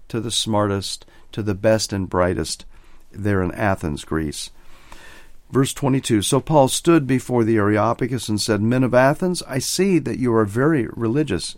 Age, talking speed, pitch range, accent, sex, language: 50-69, 165 wpm, 110-145 Hz, American, male, English